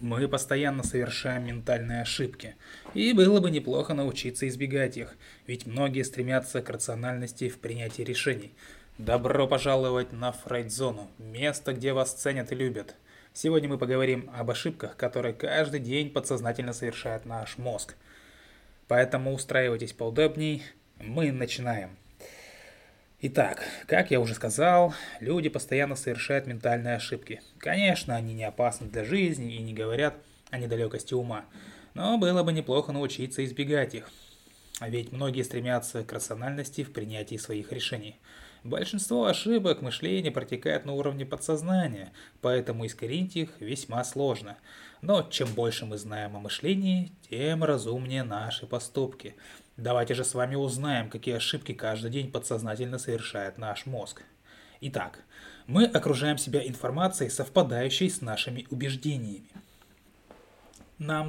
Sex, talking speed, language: male, 130 wpm, Russian